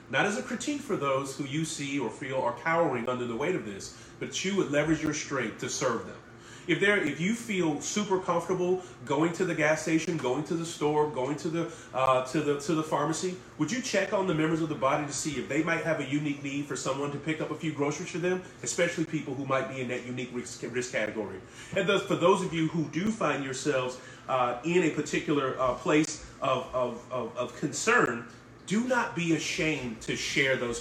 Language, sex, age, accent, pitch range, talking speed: English, male, 30-49, American, 130-175 Hz, 230 wpm